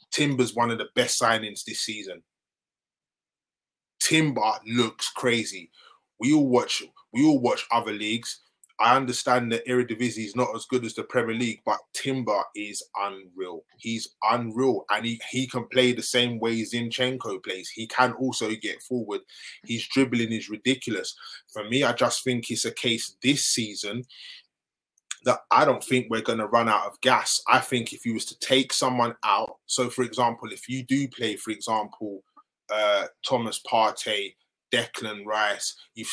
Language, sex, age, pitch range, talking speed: English, male, 20-39, 115-130 Hz, 170 wpm